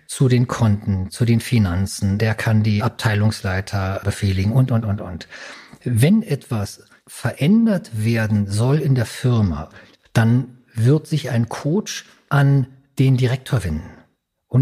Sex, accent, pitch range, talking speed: male, German, 115-155 Hz, 135 wpm